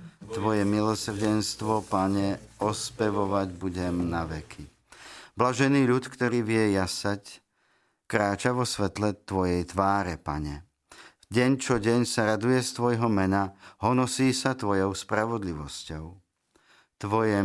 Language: Slovak